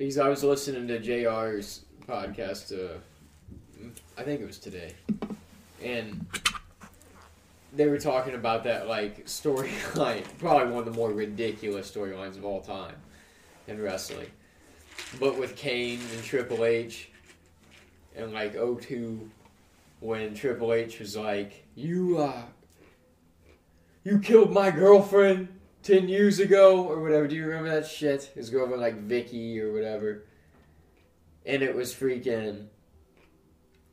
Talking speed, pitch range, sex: 125 wpm, 95-150 Hz, male